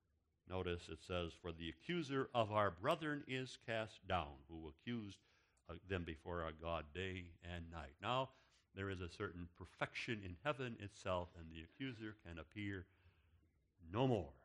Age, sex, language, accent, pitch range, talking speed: 60-79, male, English, American, 85-110 Hz, 160 wpm